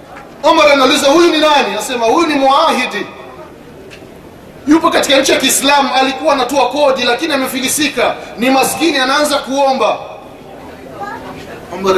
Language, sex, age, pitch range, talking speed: Swahili, male, 30-49, 220-270 Hz, 120 wpm